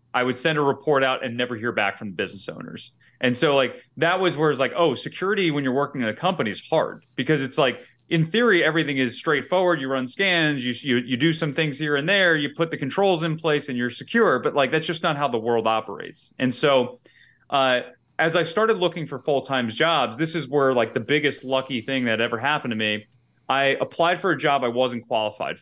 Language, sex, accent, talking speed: English, male, American, 240 wpm